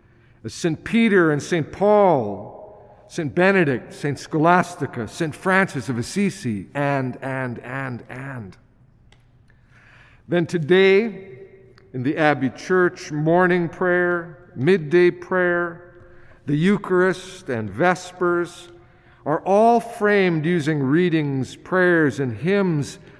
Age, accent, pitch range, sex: 50-69, American, 130-180 Hz, male